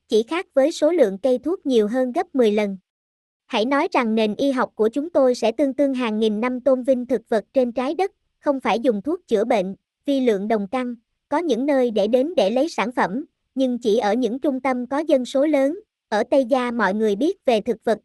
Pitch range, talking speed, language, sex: 220-280 Hz, 240 wpm, Vietnamese, male